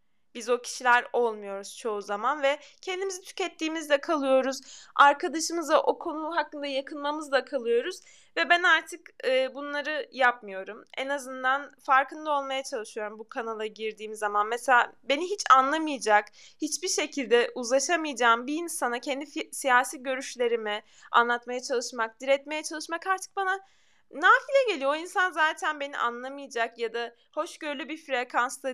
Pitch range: 235-300 Hz